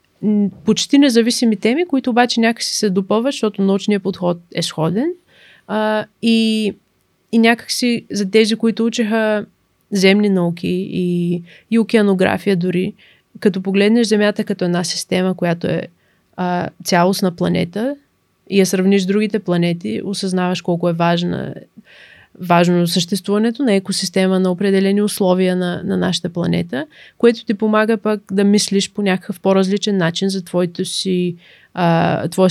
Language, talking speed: Bulgarian, 135 wpm